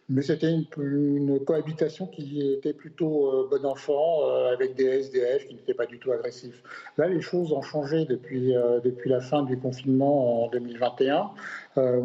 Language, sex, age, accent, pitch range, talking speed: French, male, 50-69, French, 125-155 Hz, 175 wpm